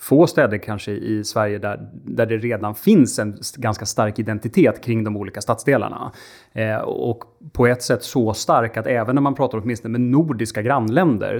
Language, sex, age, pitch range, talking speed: Swedish, male, 30-49, 110-130 Hz, 180 wpm